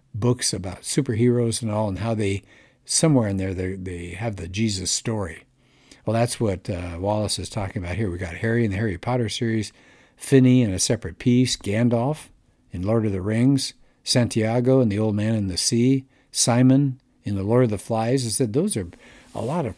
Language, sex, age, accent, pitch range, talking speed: English, male, 60-79, American, 100-130 Hz, 200 wpm